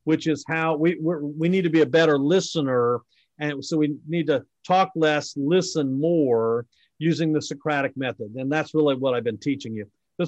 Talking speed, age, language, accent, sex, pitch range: 200 wpm, 50-69, English, American, male, 140-175 Hz